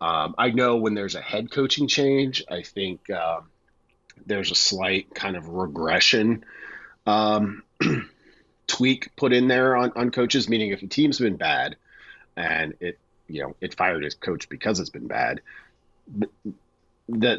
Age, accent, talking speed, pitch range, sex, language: 40-59, American, 155 wpm, 95-130 Hz, male, English